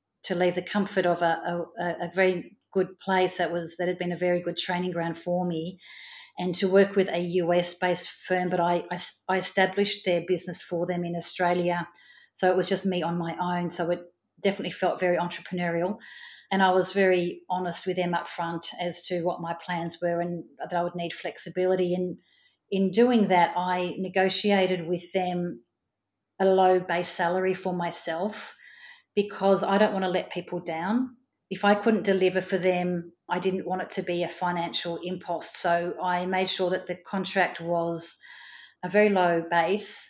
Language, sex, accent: English, female, Australian